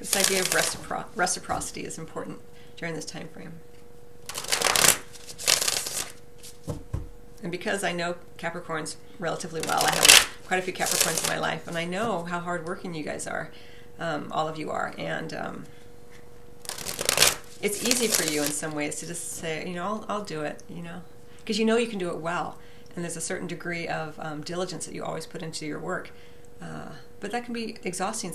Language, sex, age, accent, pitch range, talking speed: English, female, 40-59, American, 160-195 Hz, 185 wpm